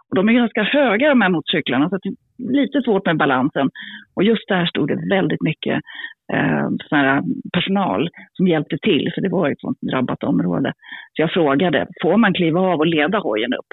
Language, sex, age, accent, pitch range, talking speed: Swedish, female, 40-59, native, 160-225 Hz, 205 wpm